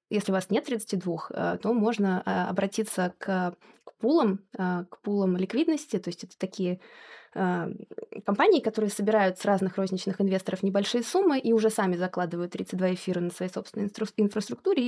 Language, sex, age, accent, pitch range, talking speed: Russian, female, 20-39, native, 190-220 Hz, 140 wpm